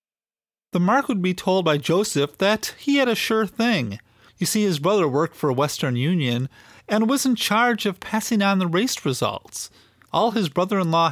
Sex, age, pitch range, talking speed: male, 40-59, 140-210 Hz, 190 wpm